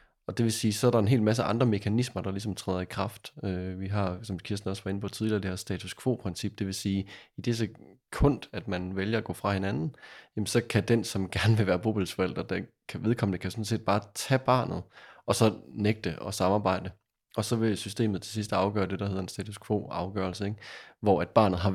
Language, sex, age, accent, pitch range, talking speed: Danish, male, 20-39, native, 95-110 Hz, 235 wpm